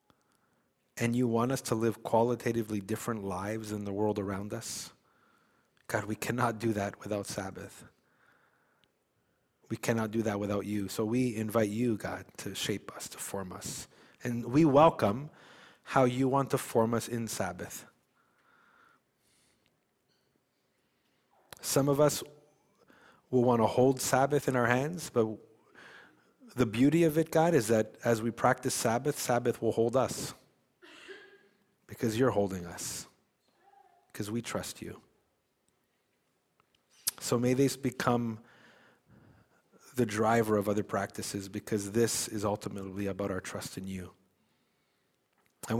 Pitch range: 105-130 Hz